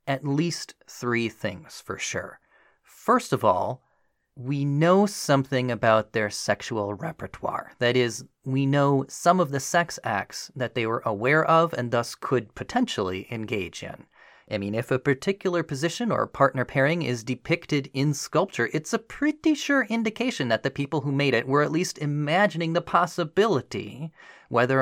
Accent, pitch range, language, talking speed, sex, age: American, 120-170 Hz, English, 160 wpm, male, 30-49